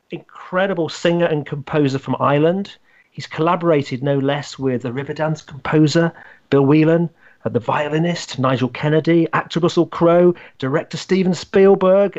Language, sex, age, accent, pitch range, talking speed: English, male, 40-59, British, 130-170 Hz, 140 wpm